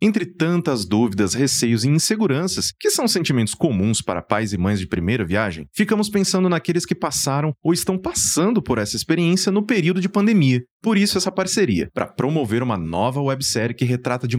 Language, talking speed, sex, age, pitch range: Portuguese, 185 wpm, male, 30-49, 115-175 Hz